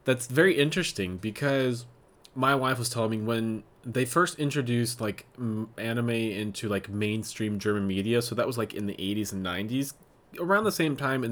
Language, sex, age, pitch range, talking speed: English, male, 20-39, 105-135 Hz, 180 wpm